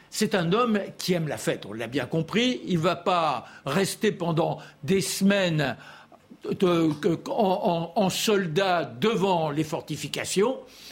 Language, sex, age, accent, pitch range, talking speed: French, male, 60-79, French, 170-215 Hz, 150 wpm